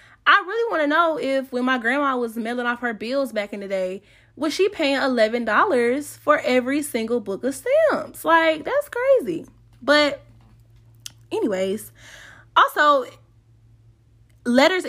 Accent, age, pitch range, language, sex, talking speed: American, 20-39, 205-285 Hz, English, female, 145 wpm